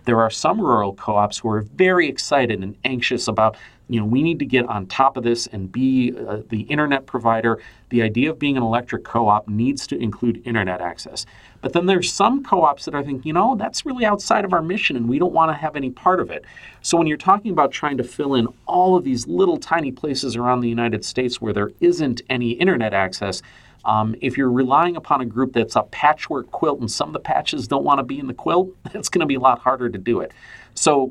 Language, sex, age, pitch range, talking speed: English, male, 40-59, 115-150 Hz, 240 wpm